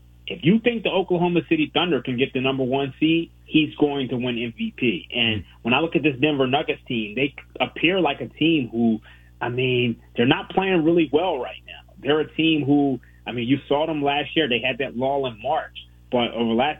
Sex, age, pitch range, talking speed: male, 30-49, 120-155 Hz, 225 wpm